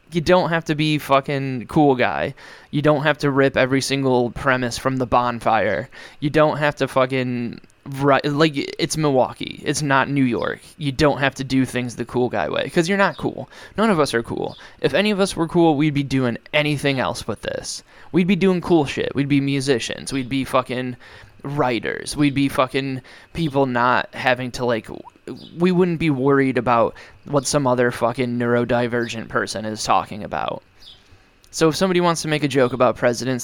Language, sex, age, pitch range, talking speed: English, male, 20-39, 120-145 Hz, 195 wpm